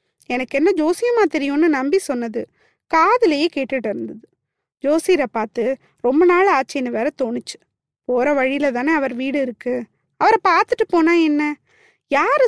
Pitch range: 265-360 Hz